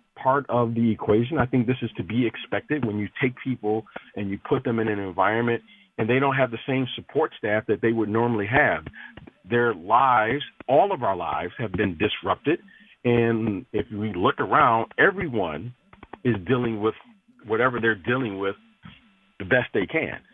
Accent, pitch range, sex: American, 110-130 Hz, male